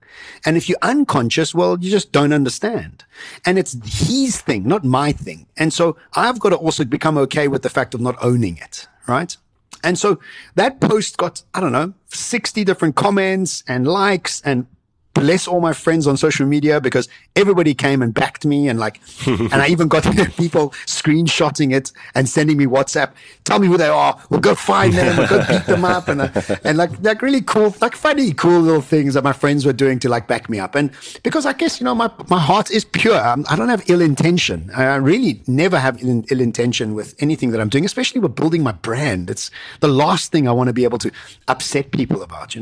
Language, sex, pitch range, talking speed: English, male, 130-180 Hz, 220 wpm